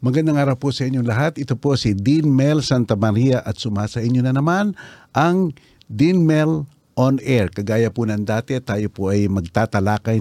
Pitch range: 105-135 Hz